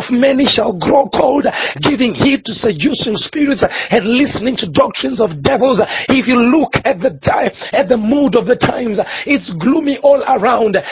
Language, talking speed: English, 170 wpm